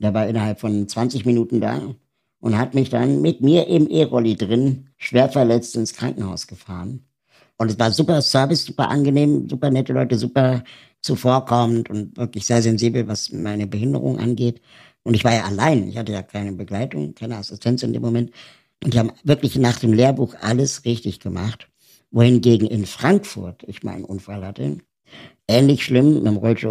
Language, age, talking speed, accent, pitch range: German, 60-79, 175 wpm, German, 105-125 Hz